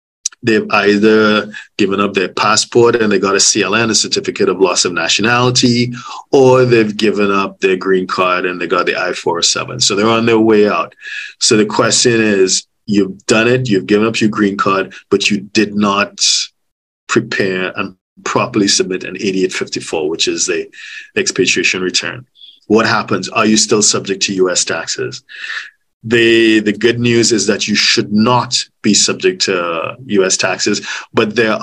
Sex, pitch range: male, 100-115 Hz